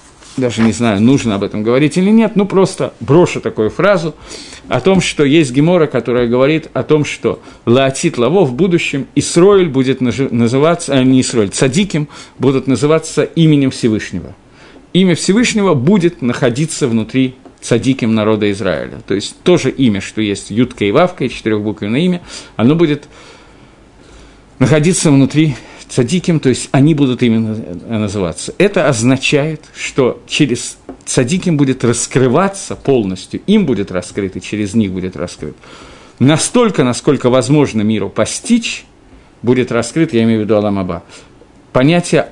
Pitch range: 110-155 Hz